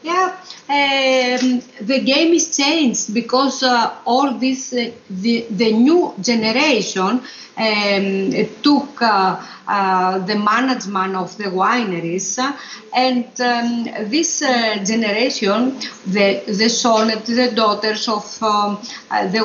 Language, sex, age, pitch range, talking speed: Hebrew, female, 50-69, 200-250 Hz, 115 wpm